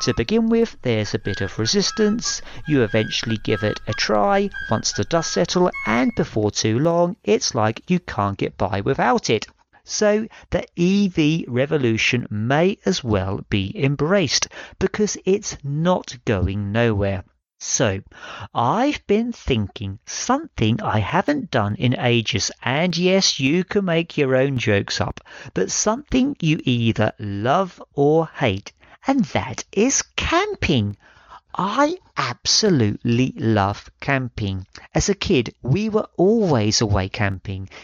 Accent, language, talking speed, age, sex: British, English, 135 wpm, 50-69, male